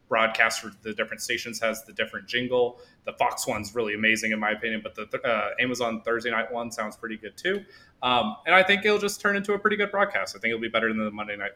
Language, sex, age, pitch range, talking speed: English, male, 20-39, 110-135 Hz, 255 wpm